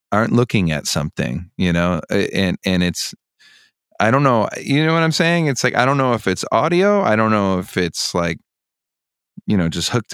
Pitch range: 90-125 Hz